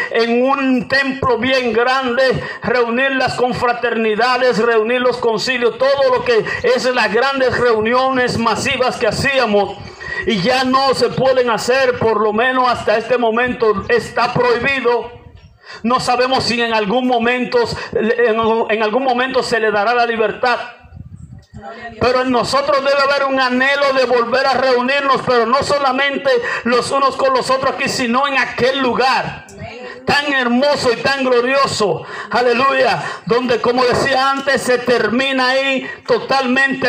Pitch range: 230-265 Hz